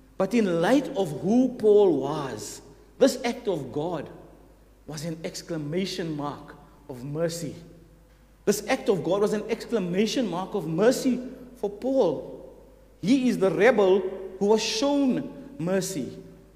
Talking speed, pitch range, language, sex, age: 135 wpm, 180-245 Hz, English, male, 50-69